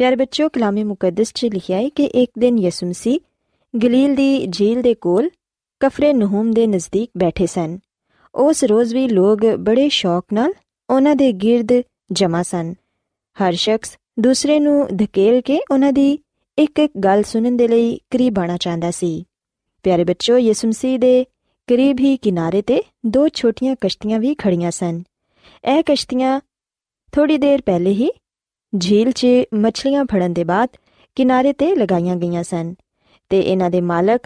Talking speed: 145 wpm